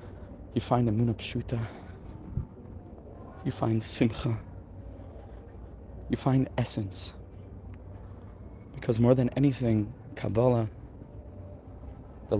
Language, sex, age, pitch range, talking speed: English, male, 20-39, 95-120 Hz, 80 wpm